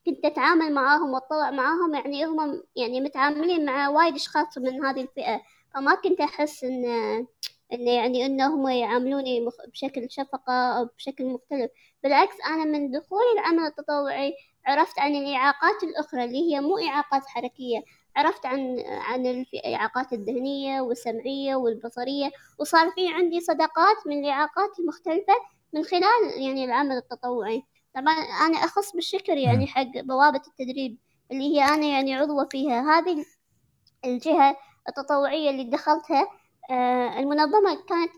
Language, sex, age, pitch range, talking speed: Arabic, male, 20-39, 265-330 Hz, 130 wpm